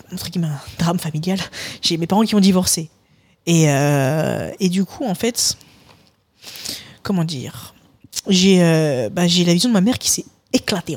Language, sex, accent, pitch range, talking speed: French, female, French, 155-195 Hz, 165 wpm